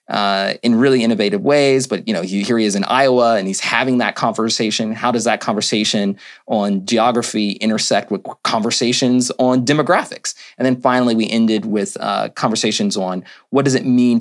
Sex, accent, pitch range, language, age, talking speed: male, American, 105-130 Hz, English, 30-49, 180 wpm